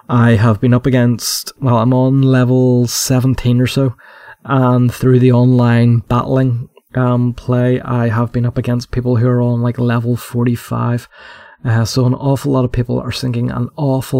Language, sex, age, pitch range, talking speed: English, male, 20-39, 115-125 Hz, 180 wpm